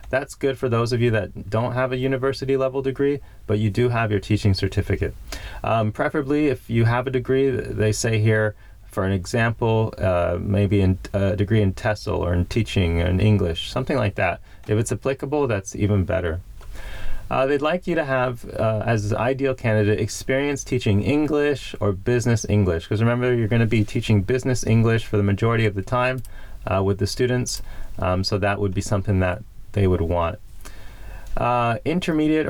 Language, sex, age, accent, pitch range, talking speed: English, male, 30-49, American, 100-130 Hz, 185 wpm